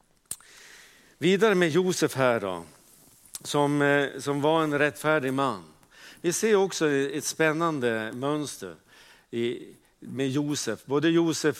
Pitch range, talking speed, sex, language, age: 125-155 Hz, 115 wpm, male, Swedish, 50-69